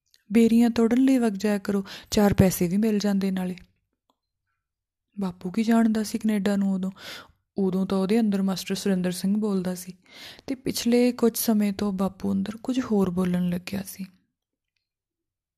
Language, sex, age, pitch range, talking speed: Punjabi, female, 20-39, 190-230 Hz, 155 wpm